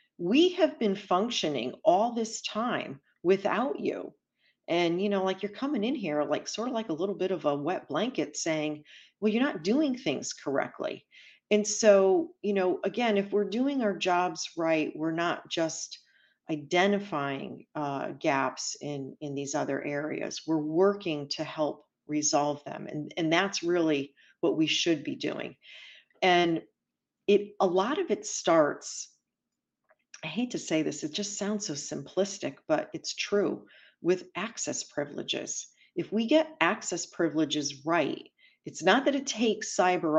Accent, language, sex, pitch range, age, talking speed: American, English, female, 155-215 Hz, 40-59, 160 wpm